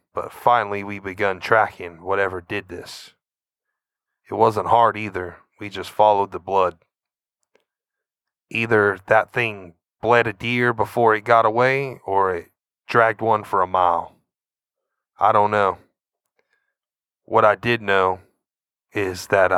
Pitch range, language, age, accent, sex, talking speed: 95-110 Hz, English, 30-49, American, male, 130 wpm